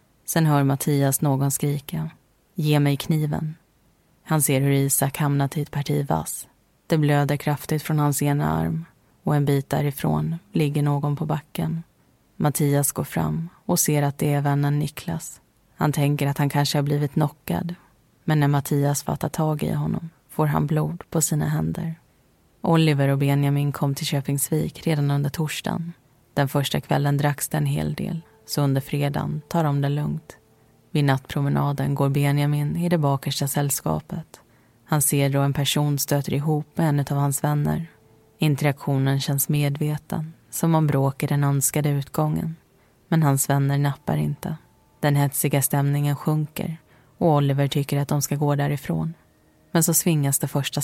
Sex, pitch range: female, 140-150 Hz